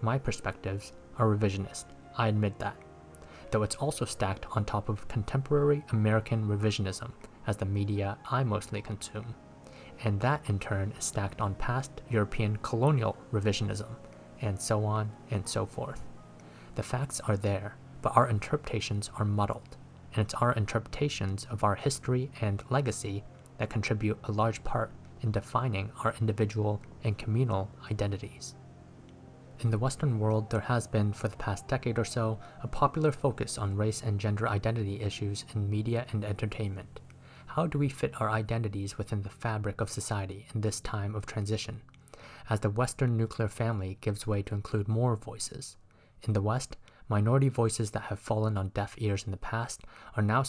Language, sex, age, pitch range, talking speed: English, male, 20-39, 100-115 Hz, 165 wpm